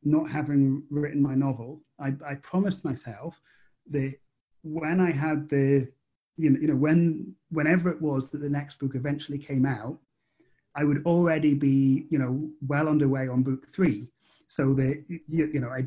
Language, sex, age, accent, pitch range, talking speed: English, male, 30-49, British, 135-160 Hz, 175 wpm